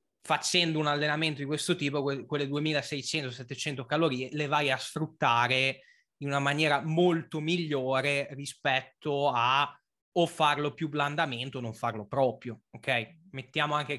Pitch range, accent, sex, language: 135-155 Hz, native, male, Italian